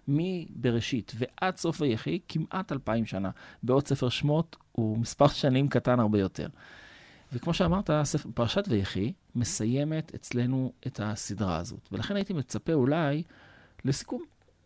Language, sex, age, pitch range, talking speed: Hebrew, male, 40-59, 110-155 Hz, 125 wpm